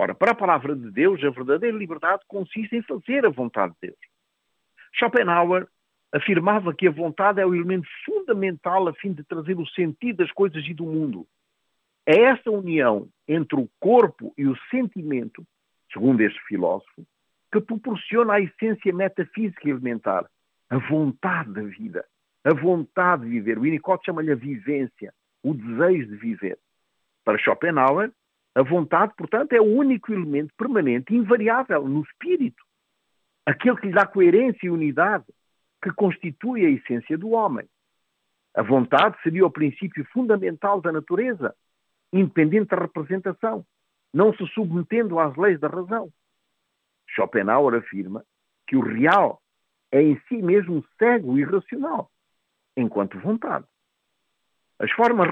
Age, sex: 50-69, male